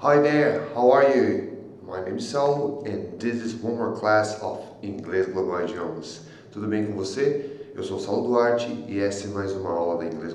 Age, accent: 30-49, Brazilian